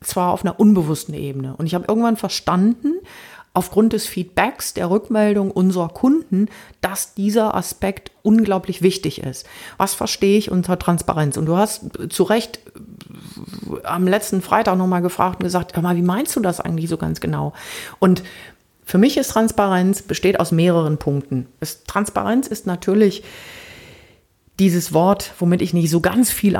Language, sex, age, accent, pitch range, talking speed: German, female, 40-59, German, 170-210 Hz, 160 wpm